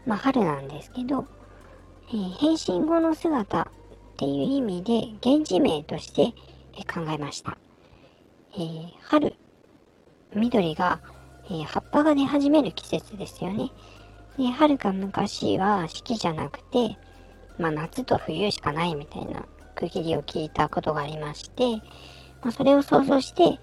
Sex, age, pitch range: male, 50-69, 160-235 Hz